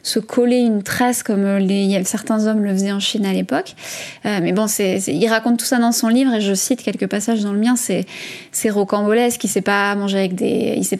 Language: French